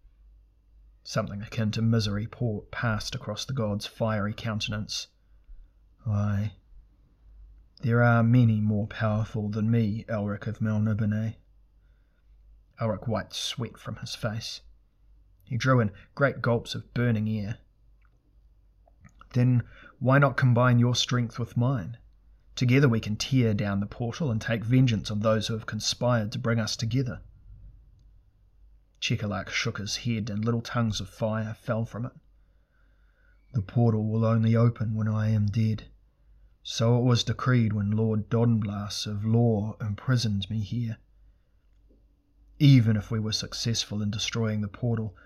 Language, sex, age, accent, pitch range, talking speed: English, male, 30-49, Australian, 105-120 Hz, 140 wpm